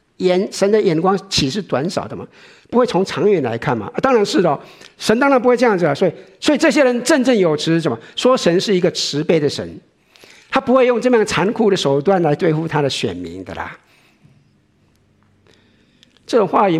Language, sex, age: Chinese, male, 50-69